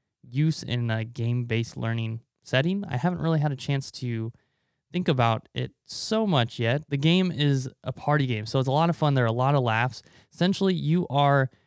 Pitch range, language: 120-150 Hz, English